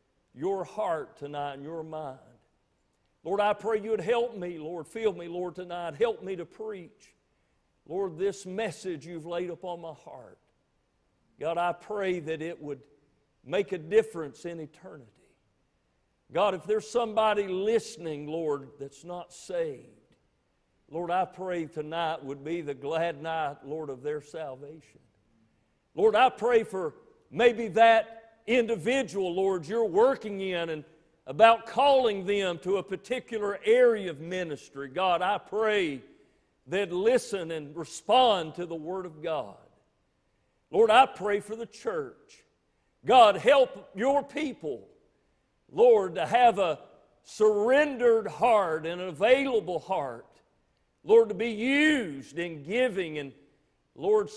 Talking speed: 135 wpm